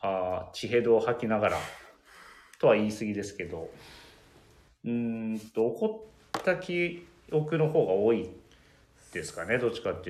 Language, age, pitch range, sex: Japanese, 30-49, 95-150 Hz, male